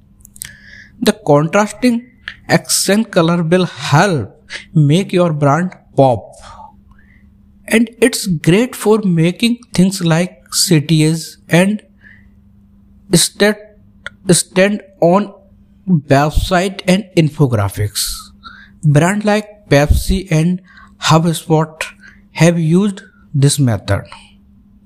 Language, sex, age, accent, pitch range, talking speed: Hindi, male, 60-79, native, 150-200 Hz, 85 wpm